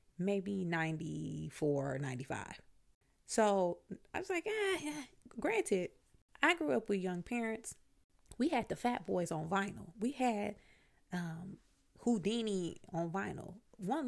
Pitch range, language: 165-235 Hz, English